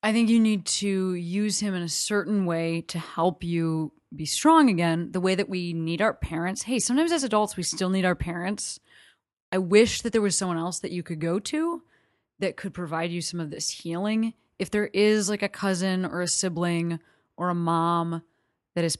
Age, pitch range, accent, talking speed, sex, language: 20-39, 165-210 Hz, American, 210 wpm, female, English